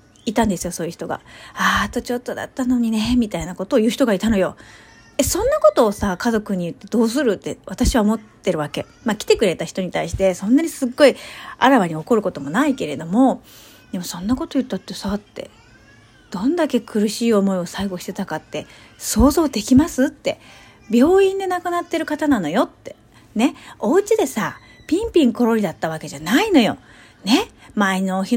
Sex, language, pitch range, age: female, Japanese, 190-275 Hz, 40-59